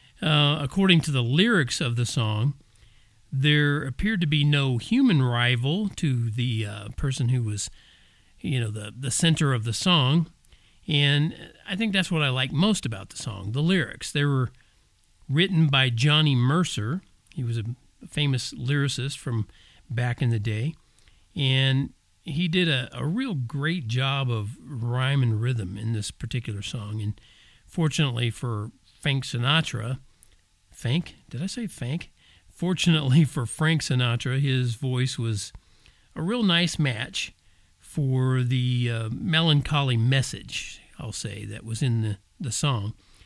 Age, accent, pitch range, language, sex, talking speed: 50-69, American, 115-155 Hz, English, male, 150 wpm